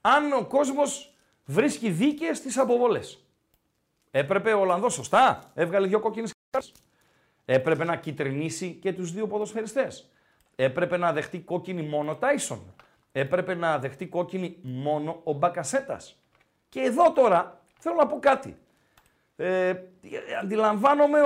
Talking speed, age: 125 wpm, 50-69